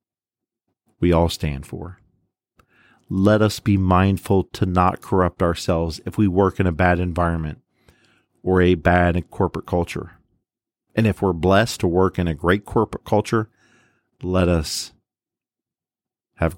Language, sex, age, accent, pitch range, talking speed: English, male, 40-59, American, 85-105 Hz, 140 wpm